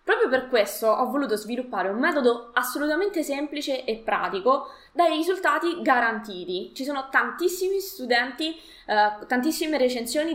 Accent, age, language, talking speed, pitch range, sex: native, 20-39, Italian, 130 wpm, 225-310 Hz, female